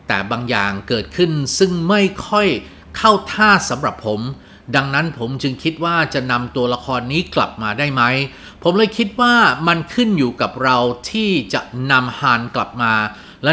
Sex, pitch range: male, 120-170 Hz